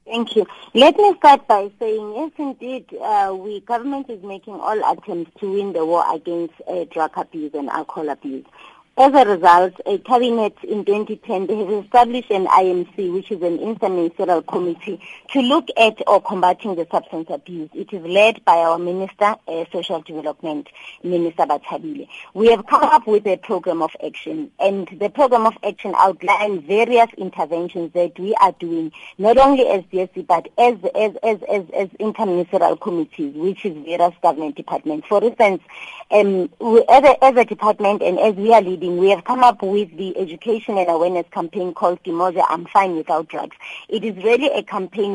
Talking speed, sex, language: 180 wpm, female, English